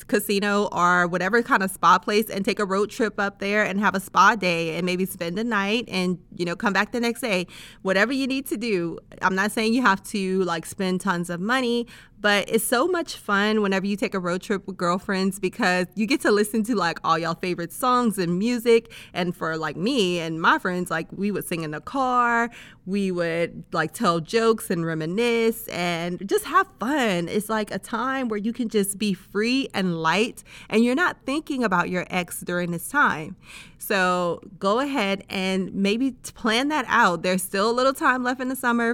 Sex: female